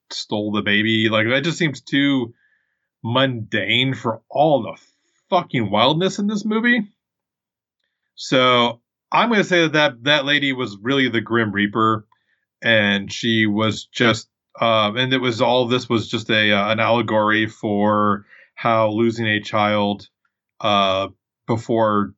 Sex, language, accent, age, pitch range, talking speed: male, English, American, 30-49, 105-130 Hz, 145 wpm